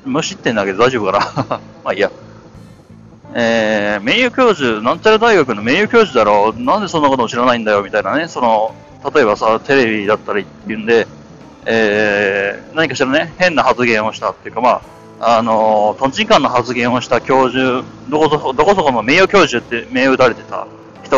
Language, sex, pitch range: Japanese, male, 115-190 Hz